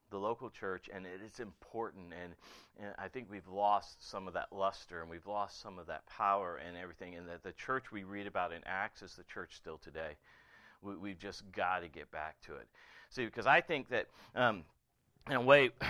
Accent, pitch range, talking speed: American, 110-145 Hz, 215 wpm